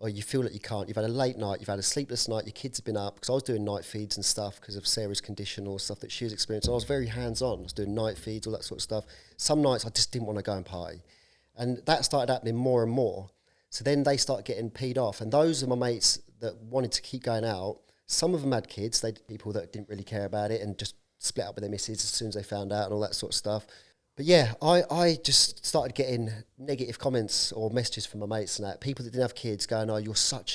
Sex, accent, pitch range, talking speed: male, British, 105-125 Hz, 285 wpm